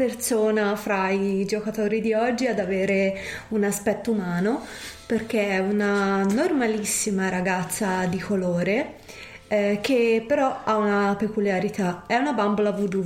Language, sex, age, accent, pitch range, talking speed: Italian, female, 20-39, native, 185-215 Hz, 125 wpm